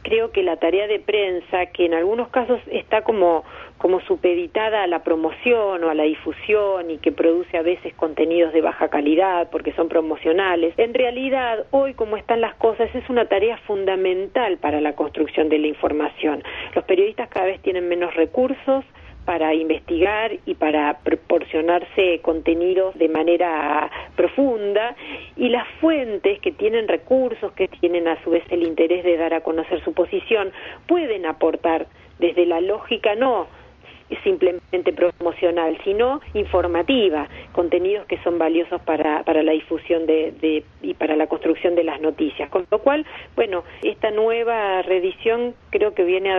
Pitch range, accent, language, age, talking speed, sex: 160-220 Hz, Argentinian, Spanish, 40-59, 160 wpm, female